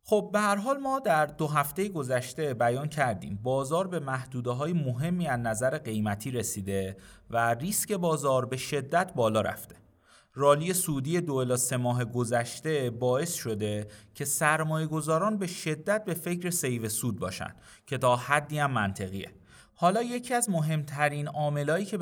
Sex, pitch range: male, 120-170 Hz